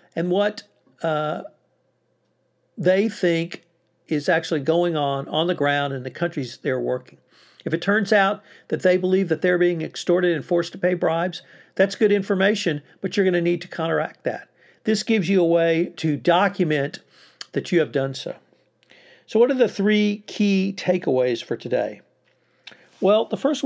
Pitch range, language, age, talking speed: 155-190 Hz, English, 50-69, 170 wpm